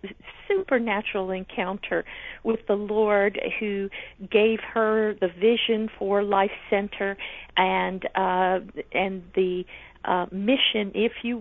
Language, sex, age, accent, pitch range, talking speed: English, female, 50-69, American, 195-230 Hz, 110 wpm